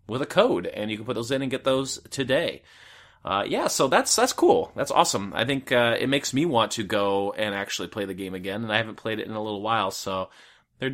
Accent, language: American, English